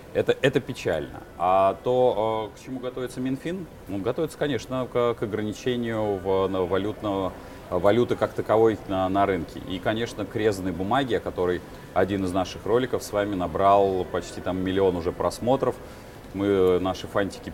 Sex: male